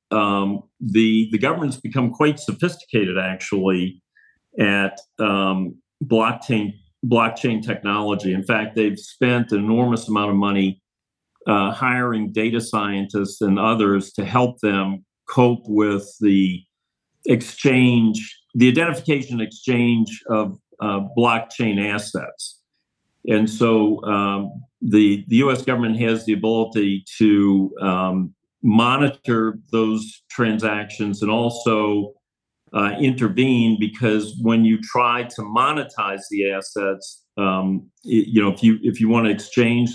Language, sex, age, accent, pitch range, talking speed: English, male, 50-69, American, 100-115 Hz, 120 wpm